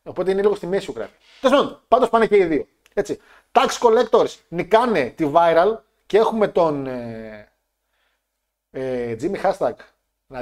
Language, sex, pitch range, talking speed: Greek, male, 140-190 Hz, 150 wpm